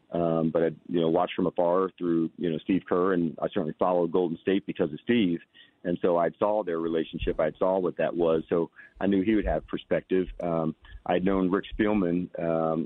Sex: male